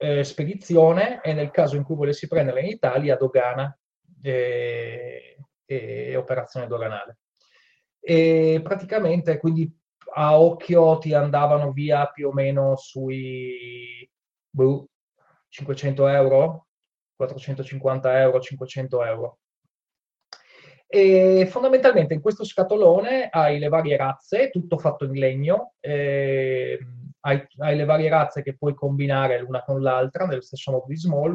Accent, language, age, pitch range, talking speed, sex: native, Italian, 20-39, 130-165 Hz, 130 wpm, male